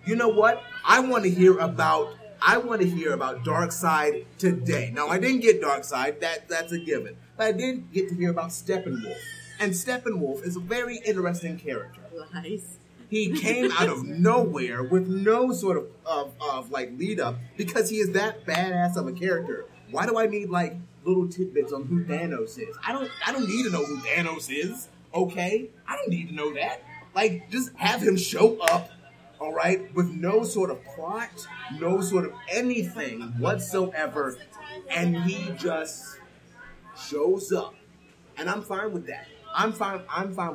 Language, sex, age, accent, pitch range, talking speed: English, male, 30-49, American, 165-215 Hz, 180 wpm